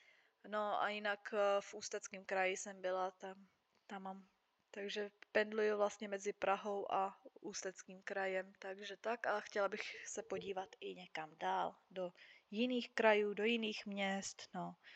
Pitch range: 200-235 Hz